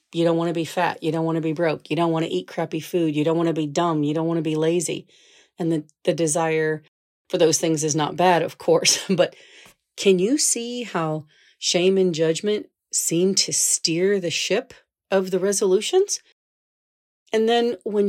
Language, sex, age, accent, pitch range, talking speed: English, female, 40-59, American, 160-210 Hz, 205 wpm